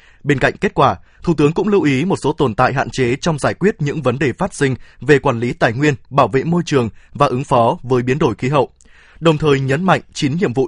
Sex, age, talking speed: male, 20-39, 265 wpm